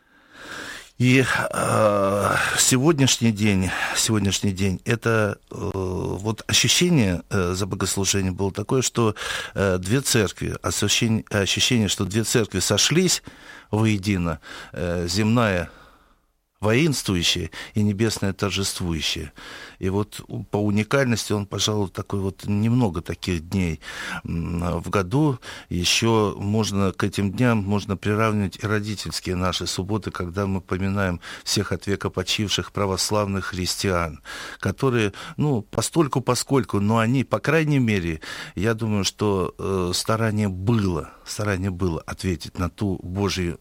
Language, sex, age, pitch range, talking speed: Russian, male, 50-69, 90-110 Hz, 120 wpm